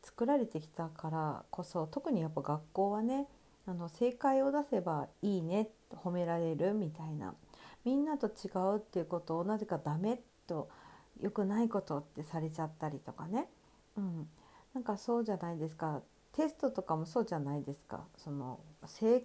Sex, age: female, 50-69